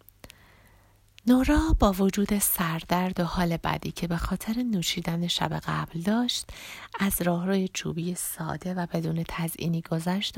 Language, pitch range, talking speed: Persian, 165-200 Hz, 125 wpm